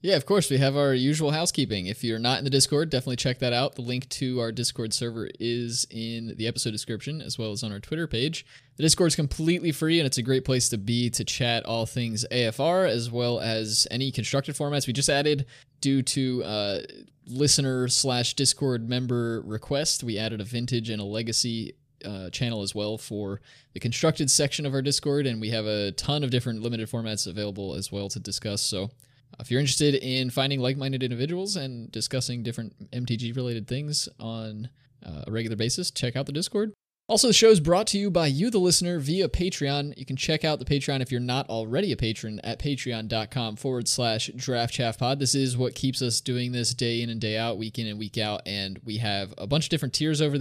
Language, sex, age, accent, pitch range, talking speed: English, male, 20-39, American, 115-140 Hz, 215 wpm